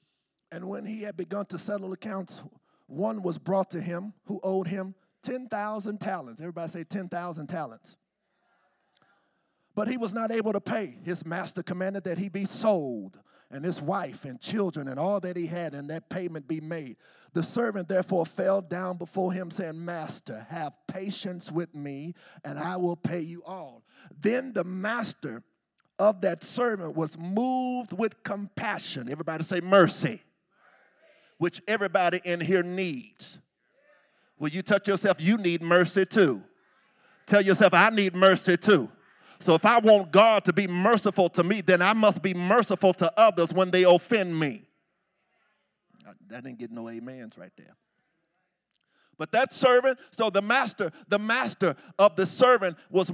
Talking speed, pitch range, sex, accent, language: 160 wpm, 175-210 Hz, male, American, English